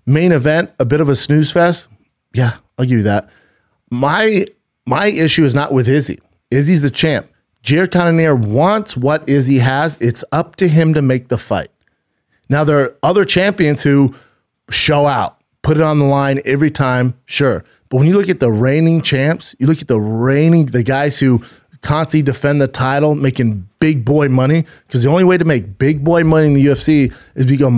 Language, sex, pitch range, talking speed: English, male, 130-155 Hz, 195 wpm